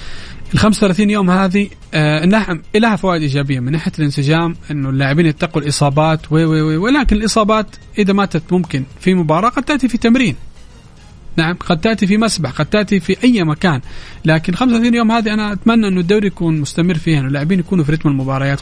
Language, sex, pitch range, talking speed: Arabic, male, 150-180 Hz, 180 wpm